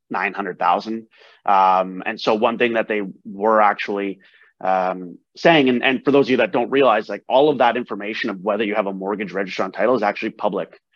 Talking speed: 210 wpm